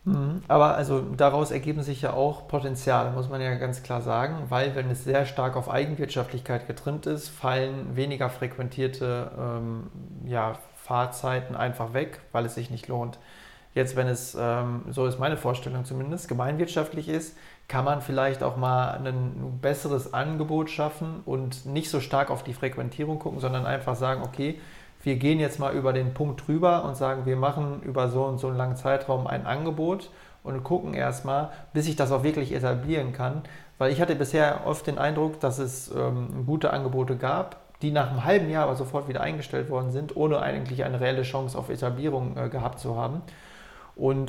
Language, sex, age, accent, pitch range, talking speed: German, male, 30-49, German, 125-145 Hz, 180 wpm